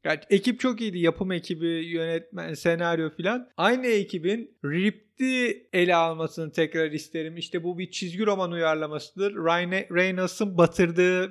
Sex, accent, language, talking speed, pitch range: male, native, Turkish, 135 wpm, 165-190 Hz